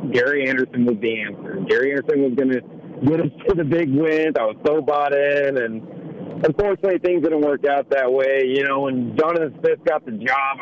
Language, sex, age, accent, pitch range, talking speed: English, male, 40-59, American, 135-180 Hz, 210 wpm